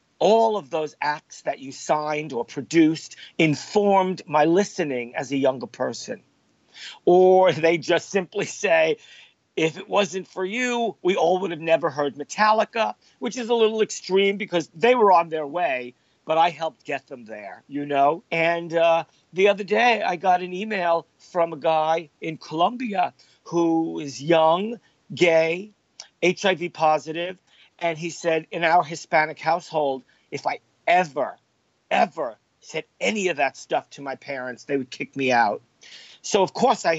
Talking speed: 160 wpm